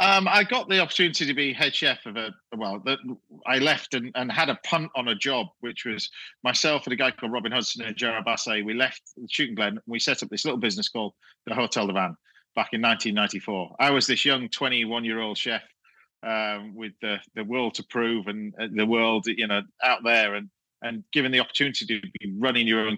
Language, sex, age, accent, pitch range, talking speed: English, male, 40-59, British, 110-140 Hz, 220 wpm